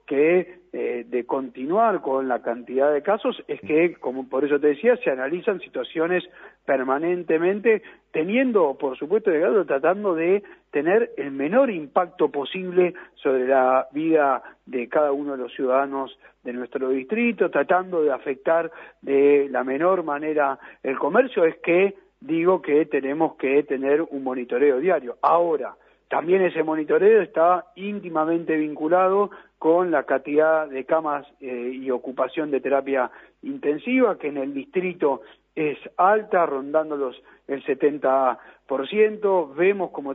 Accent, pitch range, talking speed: Argentinian, 140-185 Hz, 135 wpm